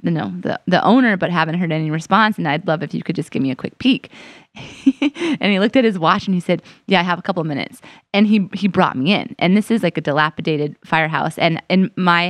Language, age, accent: English, 30-49, American